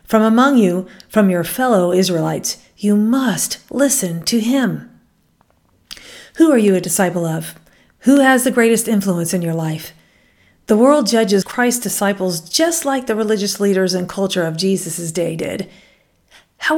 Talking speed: 155 wpm